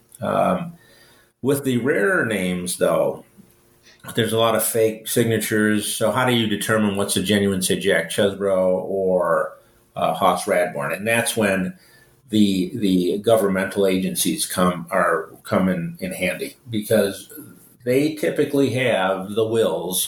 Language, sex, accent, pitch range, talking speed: English, male, American, 95-115 Hz, 135 wpm